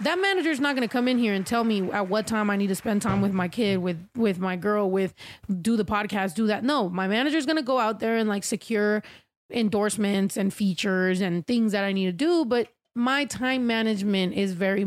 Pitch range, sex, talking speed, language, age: 210-280 Hz, female, 245 wpm, English, 20-39